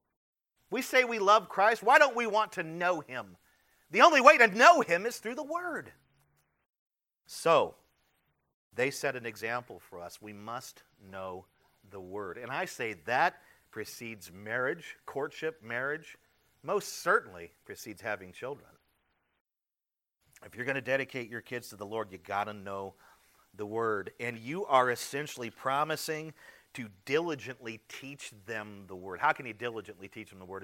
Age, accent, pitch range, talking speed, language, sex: 40-59, American, 105-155 Hz, 160 wpm, English, male